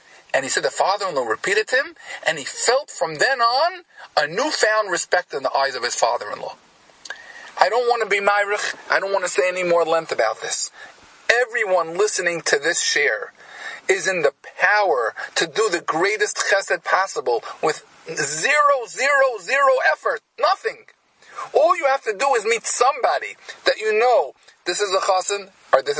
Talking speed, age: 175 wpm, 40-59